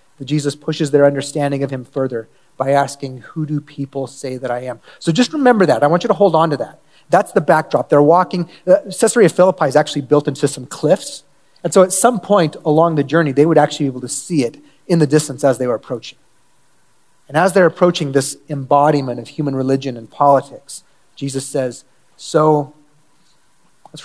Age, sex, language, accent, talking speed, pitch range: 30-49, male, English, American, 200 wpm, 140-175 Hz